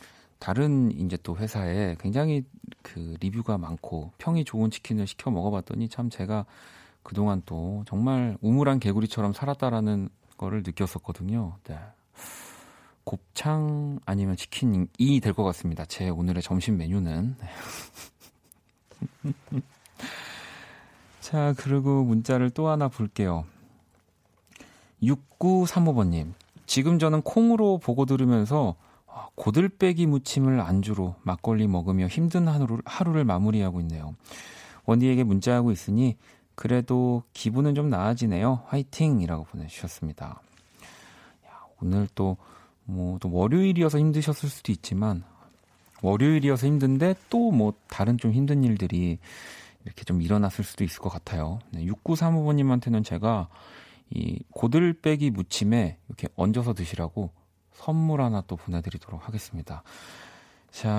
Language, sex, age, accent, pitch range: Korean, male, 40-59, native, 95-135 Hz